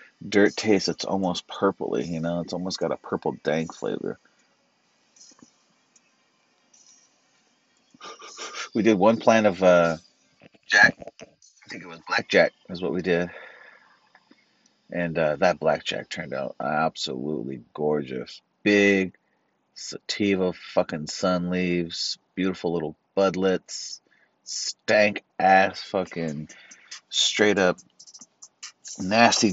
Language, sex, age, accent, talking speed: English, male, 30-49, American, 105 wpm